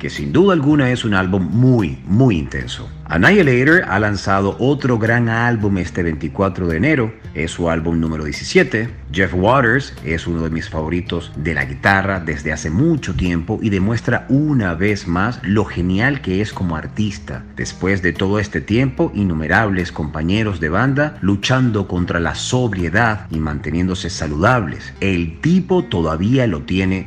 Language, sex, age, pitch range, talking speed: Spanish, male, 40-59, 85-115 Hz, 155 wpm